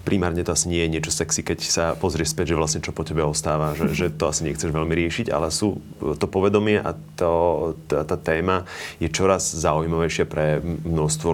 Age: 30-49